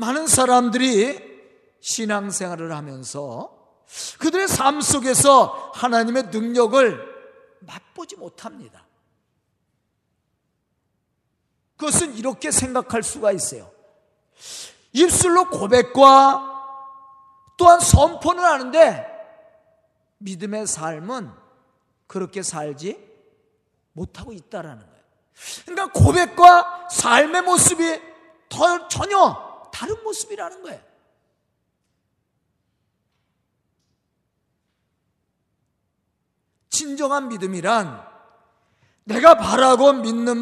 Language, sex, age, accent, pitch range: Korean, male, 40-59, native, 215-335 Hz